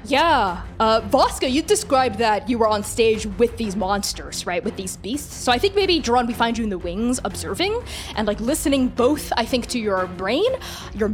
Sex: female